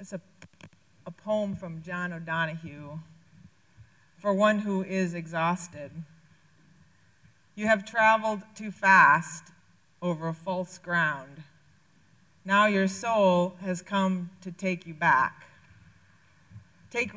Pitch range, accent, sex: 150-210 Hz, American, female